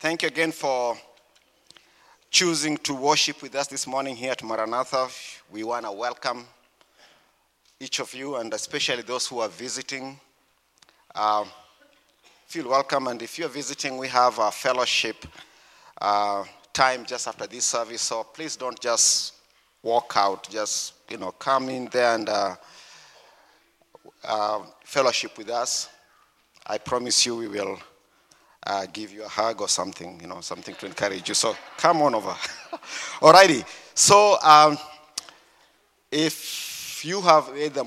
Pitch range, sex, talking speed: 115-145 Hz, male, 145 wpm